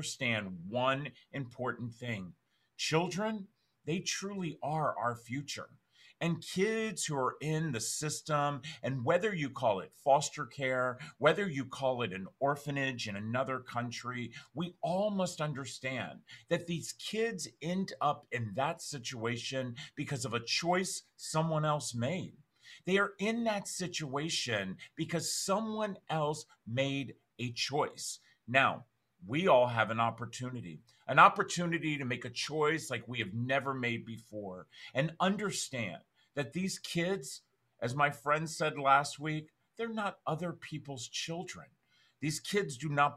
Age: 40-59